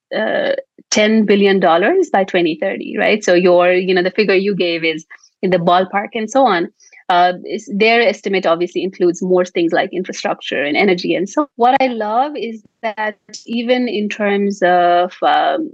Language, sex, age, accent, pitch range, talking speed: English, female, 30-49, Indian, 185-230 Hz, 170 wpm